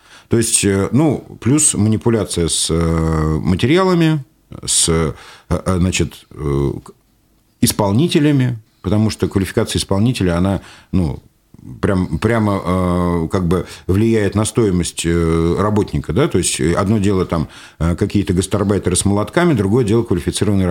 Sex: male